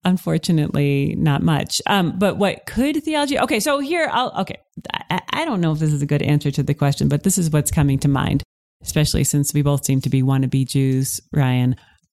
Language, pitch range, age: English, 140-180 Hz, 30-49